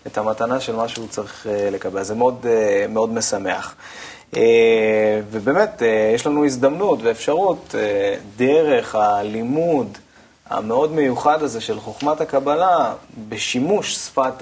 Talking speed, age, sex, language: 110 wpm, 20-39, male, Hebrew